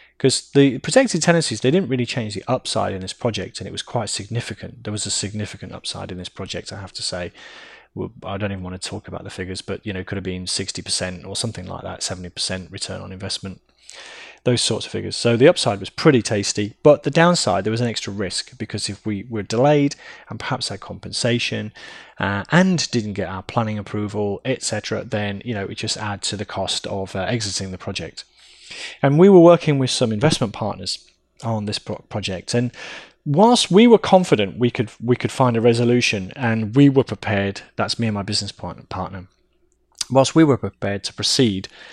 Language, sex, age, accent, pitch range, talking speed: English, male, 20-39, British, 100-125 Hz, 210 wpm